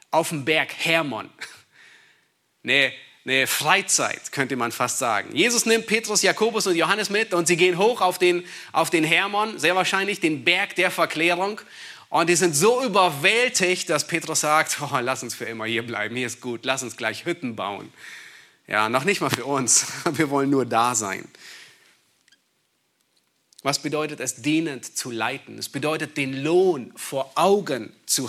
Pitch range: 125-180 Hz